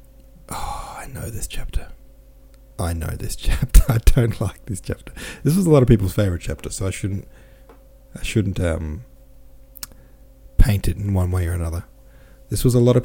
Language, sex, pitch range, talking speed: English, male, 95-125 Hz, 185 wpm